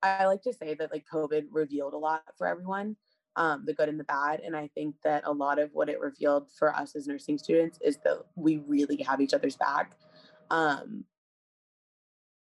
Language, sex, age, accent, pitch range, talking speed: English, female, 20-39, American, 145-170 Hz, 205 wpm